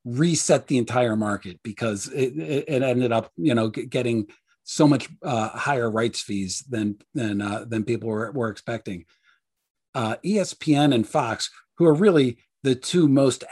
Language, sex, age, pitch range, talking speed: English, male, 40-59, 120-145 Hz, 160 wpm